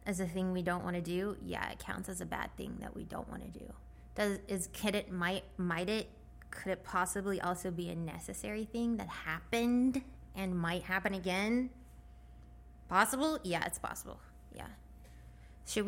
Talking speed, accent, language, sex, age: 180 wpm, American, English, female, 20-39